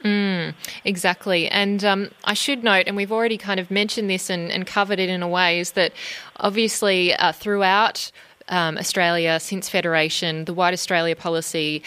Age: 20-39